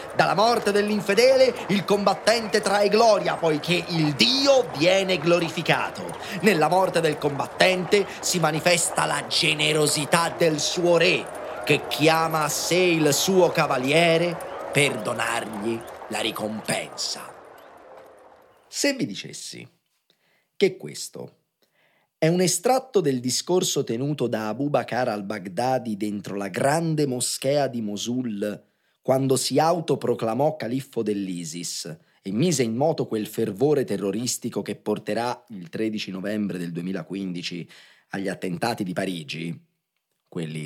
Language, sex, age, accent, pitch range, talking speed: Italian, male, 30-49, native, 100-170 Hz, 115 wpm